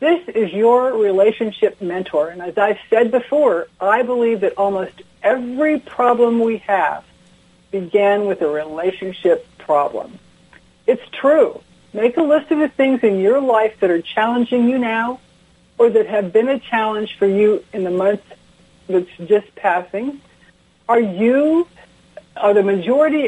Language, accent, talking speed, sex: English, American, 150 wpm, female